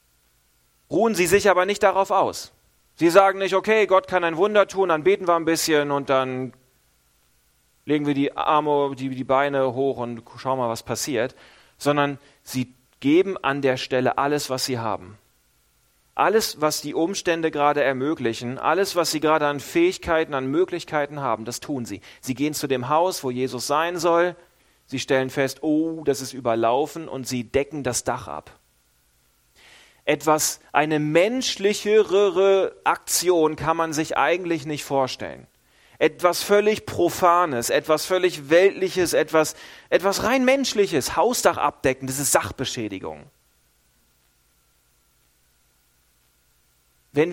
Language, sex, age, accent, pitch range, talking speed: German, male, 40-59, German, 120-170 Hz, 140 wpm